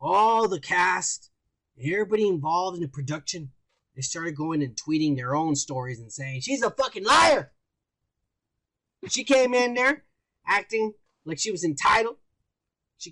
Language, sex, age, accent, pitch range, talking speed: English, male, 20-39, American, 155-220 Hz, 145 wpm